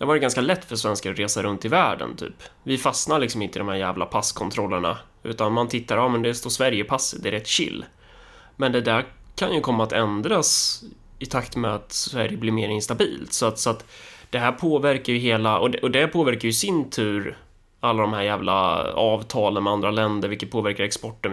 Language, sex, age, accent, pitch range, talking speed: Swedish, male, 20-39, native, 105-120 Hz, 220 wpm